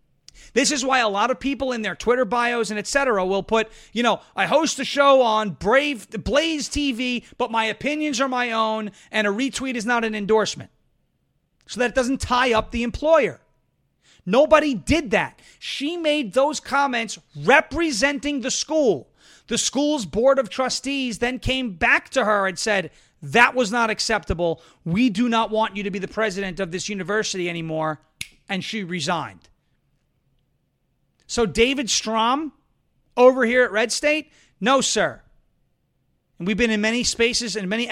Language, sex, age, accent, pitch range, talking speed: English, male, 30-49, American, 205-265 Hz, 170 wpm